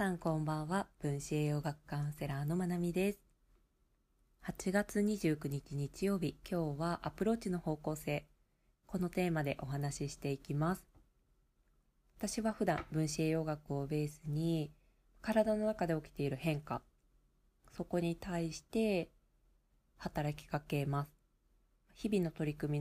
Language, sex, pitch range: Japanese, female, 145-190 Hz